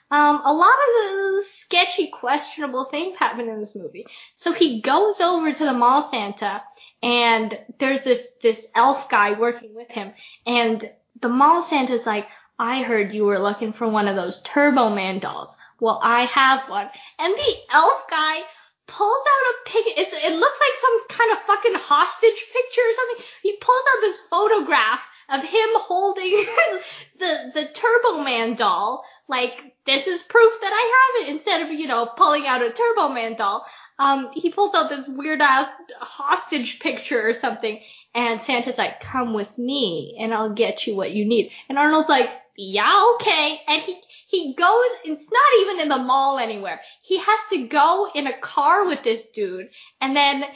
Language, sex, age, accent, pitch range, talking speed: English, female, 10-29, American, 245-395 Hz, 180 wpm